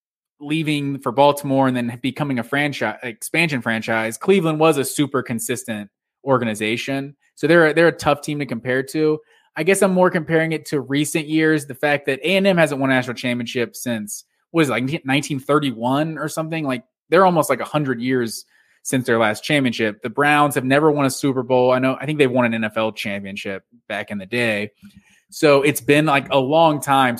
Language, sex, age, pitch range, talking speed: English, male, 20-39, 125-150 Hz, 195 wpm